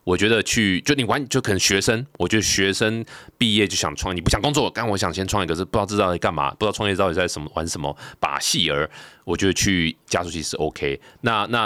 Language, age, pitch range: Chinese, 20-39, 80-105 Hz